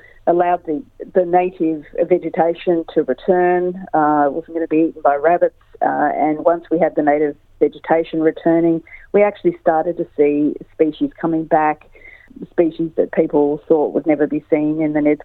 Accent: Australian